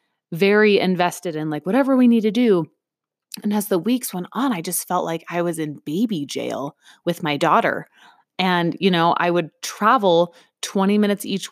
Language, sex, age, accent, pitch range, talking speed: English, female, 20-39, American, 170-235 Hz, 190 wpm